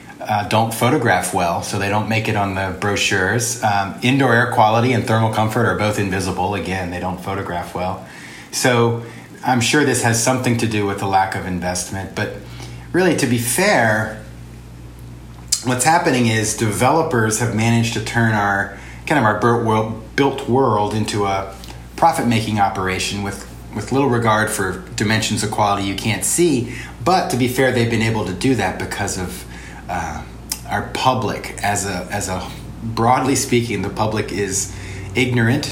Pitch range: 95-120 Hz